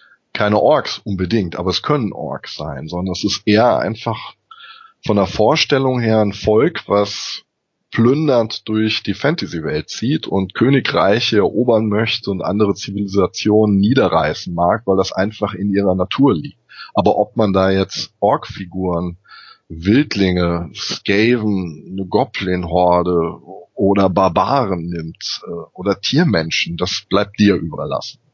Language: German